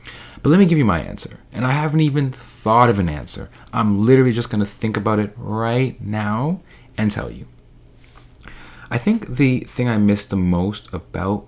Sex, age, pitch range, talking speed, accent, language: male, 30-49, 95-125 Hz, 190 wpm, American, English